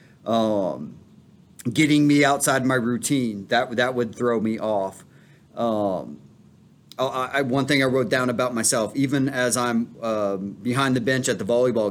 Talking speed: 160 wpm